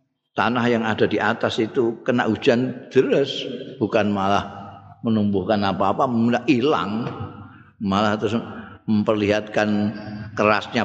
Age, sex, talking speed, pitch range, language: 50-69, male, 105 wpm, 100-140 Hz, Indonesian